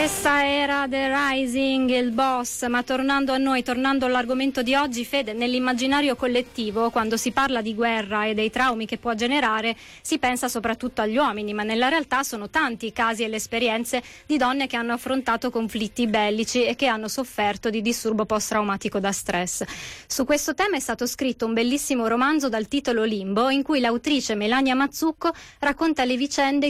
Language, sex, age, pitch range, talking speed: Italian, female, 20-39, 215-260 Hz, 180 wpm